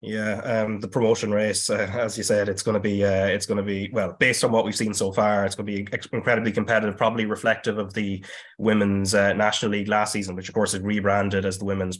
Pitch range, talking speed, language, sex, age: 95-105 Hz, 250 wpm, English, male, 20-39